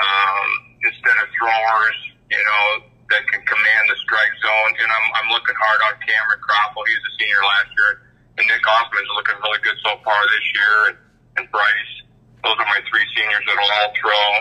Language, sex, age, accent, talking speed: English, male, 50-69, American, 195 wpm